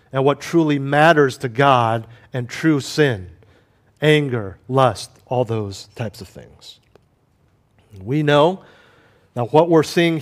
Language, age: English, 50-69